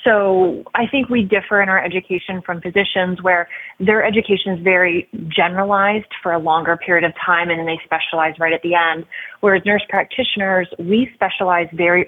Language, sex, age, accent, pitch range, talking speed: English, female, 20-39, American, 170-200 Hz, 180 wpm